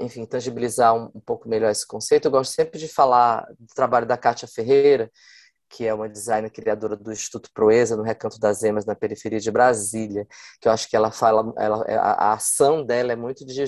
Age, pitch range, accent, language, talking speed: 20-39, 115-145 Hz, Brazilian, Portuguese, 210 wpm